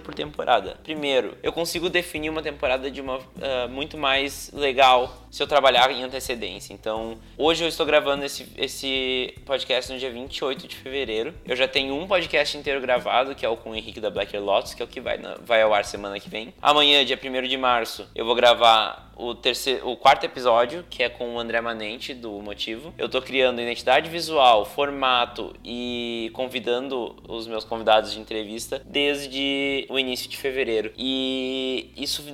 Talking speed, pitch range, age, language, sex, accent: 185 wpm, 120-145 Hz, 20-39, Portuguese, male, Brazilian